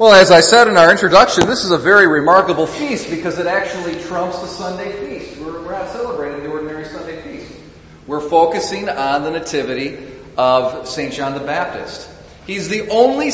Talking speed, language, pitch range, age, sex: 180 wpm, English, 150-195 Hz, 40-59, male